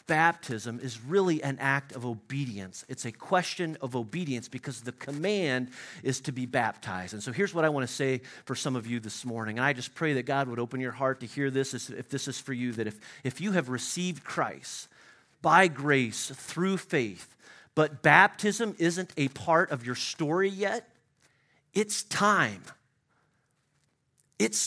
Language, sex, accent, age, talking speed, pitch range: English, male, American, 40-59, 180 wpm, 130-170 Hz